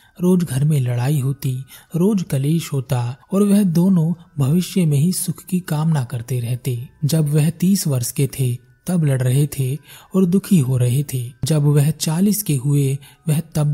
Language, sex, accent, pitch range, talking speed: Hindi, male, native, 130-165 Hz, 180 wpm